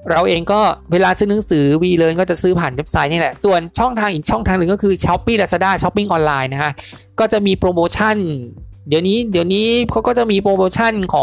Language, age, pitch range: Thai, 20-39, 150-195 Hz